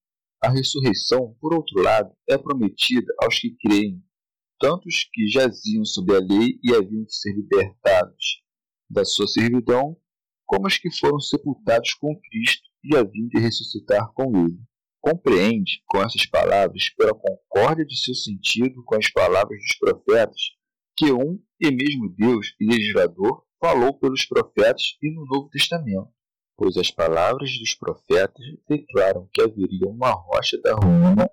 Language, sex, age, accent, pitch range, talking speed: Portuguese, male, 40-59, Brazilian, 110-185 Hz, 150 wpm